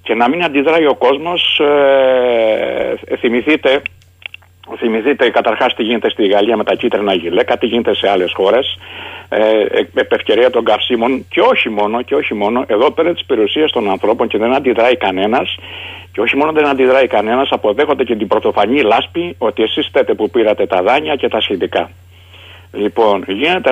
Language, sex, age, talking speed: Greek, male, 60-79, 170 wpm